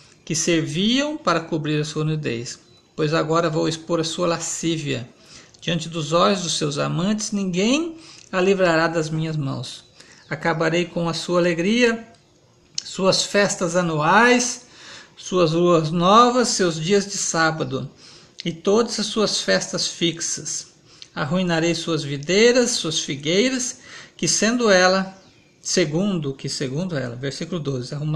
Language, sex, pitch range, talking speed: Portuguese, male, 155-185 Hz, 130 wpm